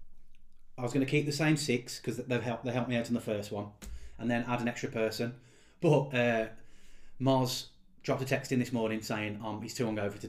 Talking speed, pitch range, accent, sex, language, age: 240 wpm, 110-130 Hz, British, male, English, 20-39